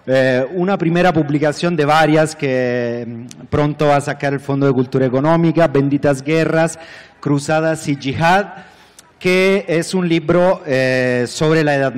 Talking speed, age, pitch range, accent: 135 wpm, 40-59, 130-160 Hz, Mexican